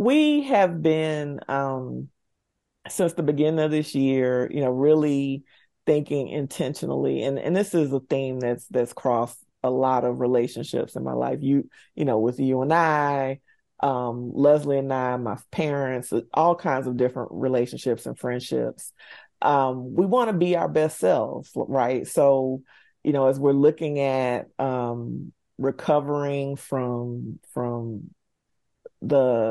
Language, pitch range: English, 125-145 Hz